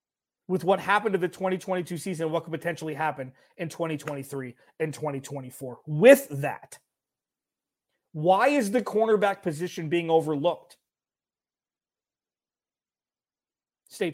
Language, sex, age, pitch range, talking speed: English, male, 30-49, 145-185 Hz, 110 wpm